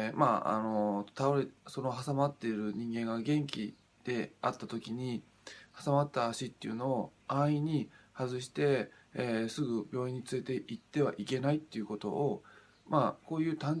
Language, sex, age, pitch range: Japanese, male, 20-39, 110-140 Hz